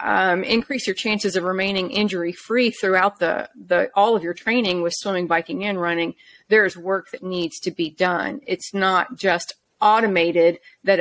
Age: 30-49